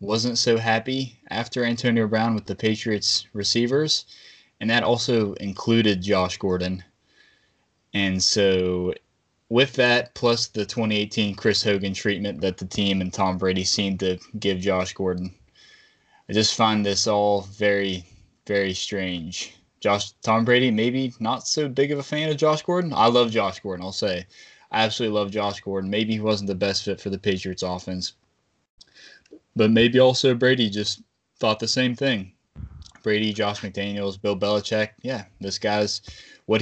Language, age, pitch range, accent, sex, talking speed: English, 20-39, 95-115 Hz, American, male, 160 wpm